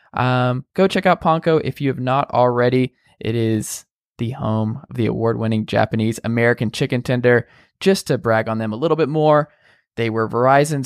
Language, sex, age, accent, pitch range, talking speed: English, male, 20-39, American, 125-165 Hz, 190 wpm